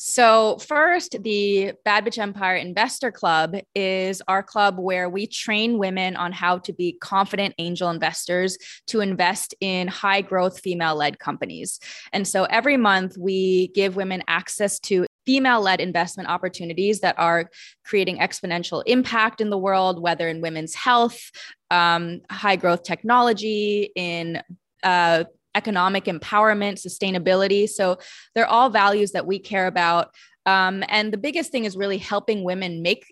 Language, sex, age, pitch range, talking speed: English, female, 20-39, 180-215 Hz, 140 wpm